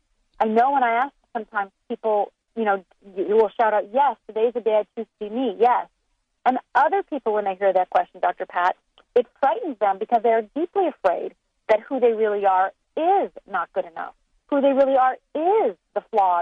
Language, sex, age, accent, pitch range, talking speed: English, female, 40-59, American, 205-270 Hz, 205 wpm